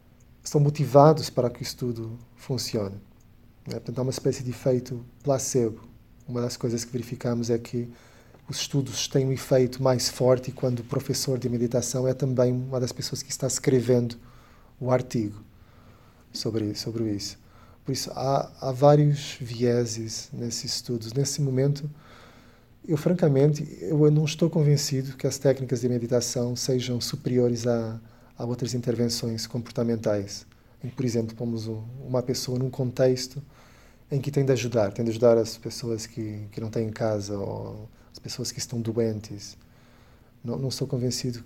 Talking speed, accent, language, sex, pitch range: 160 wpm, Brazilian, Portuguese, male, 115-130 Hz